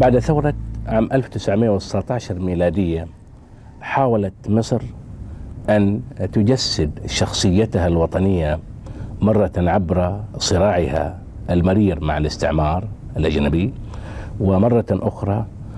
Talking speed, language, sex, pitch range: 75 wpm, Arabic, male, 95-115 Hz